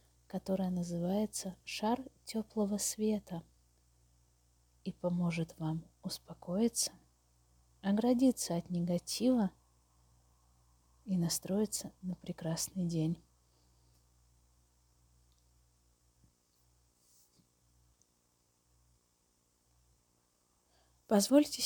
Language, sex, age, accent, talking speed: Russian, female, 30-49, native, 50 wpm